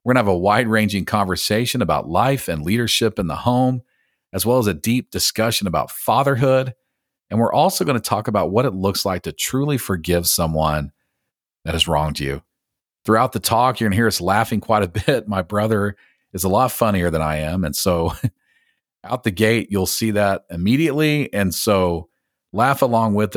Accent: American